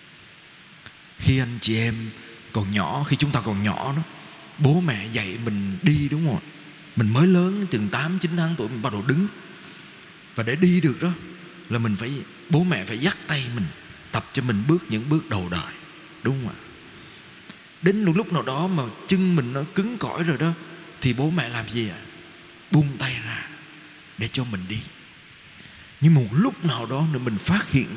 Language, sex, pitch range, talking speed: Vietnamese, male, 115-170 Hz, 195 wpm